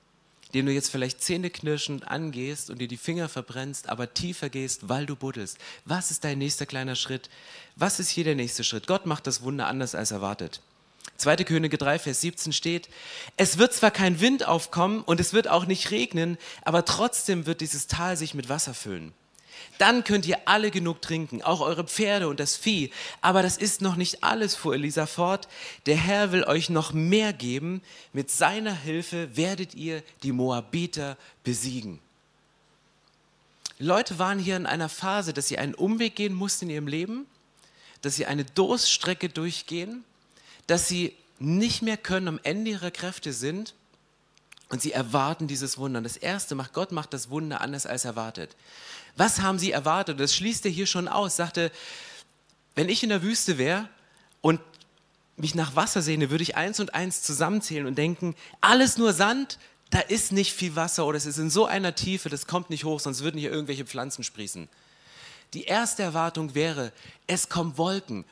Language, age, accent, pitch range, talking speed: German, 30-49, German, 145-190 Hz, 180 wpm